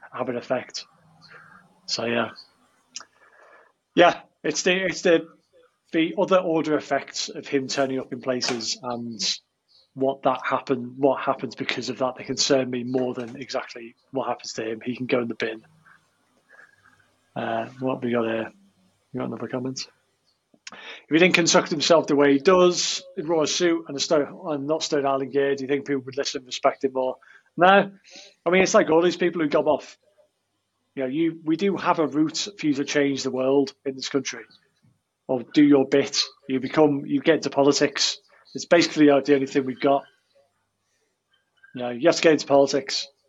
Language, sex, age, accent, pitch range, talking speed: English, male, 30-49, British, 130-160 Hz, 195 wpm